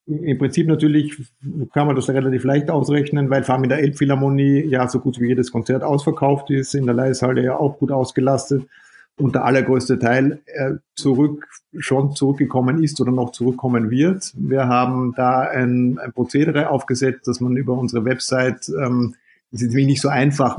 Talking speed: 170 wpm